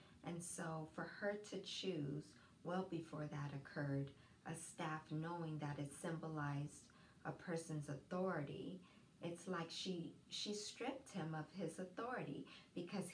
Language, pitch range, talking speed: English, 160-205 Hz, 135 wpm